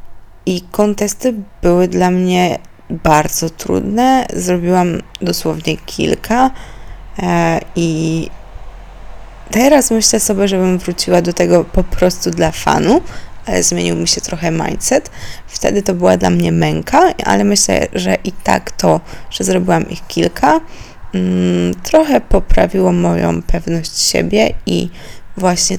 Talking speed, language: 115 wpm, Polish